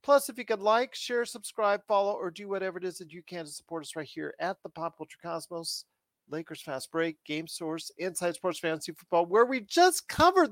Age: 40-59